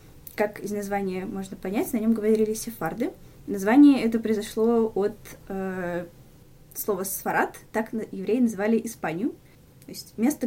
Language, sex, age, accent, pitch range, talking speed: Russian, female, 10-29, native, 190-245 Hz, 130 wpm